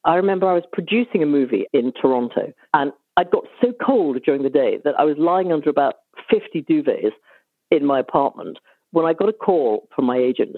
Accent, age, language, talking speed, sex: British, 50-69, English, 205 wpm, female